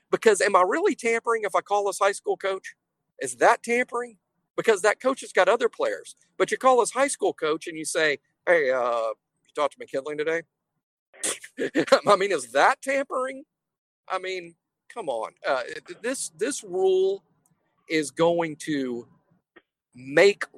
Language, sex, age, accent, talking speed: English, male, 50-69, American, 165 wpm